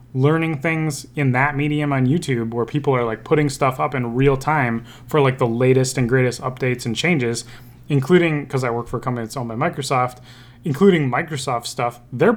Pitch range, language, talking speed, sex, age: 115-135 Hz, English, 200 wpm, male, 20-39